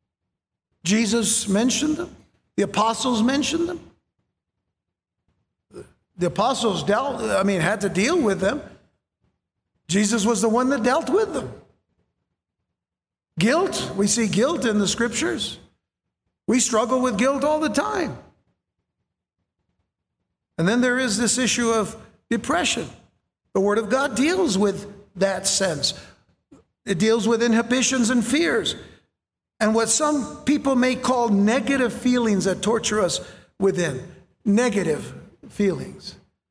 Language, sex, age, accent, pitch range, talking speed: English, male, 60-79, American, 170-235 Hz, 125 wpm